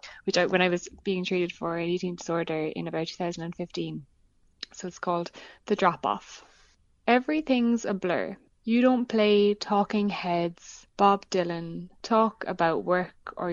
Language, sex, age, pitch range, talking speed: English, female, 20-39, 175-215 Hz, 140 wpm